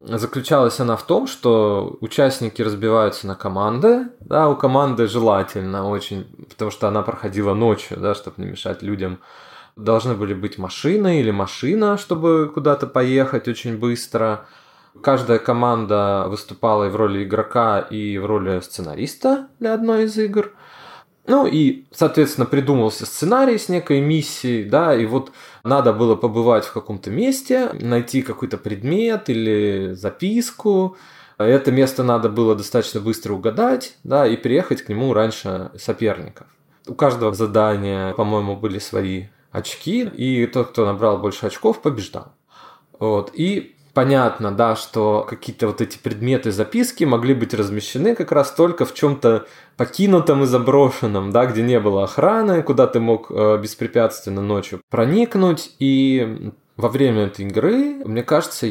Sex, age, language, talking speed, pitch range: male, 20-39, Russian, 145 wpm, 105-145 Hz